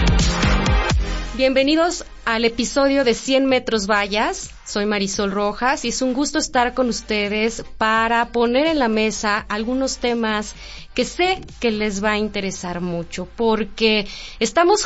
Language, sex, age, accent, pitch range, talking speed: Spanish, female, 30-49, Mexican, 200-260 Hz, 135 wpm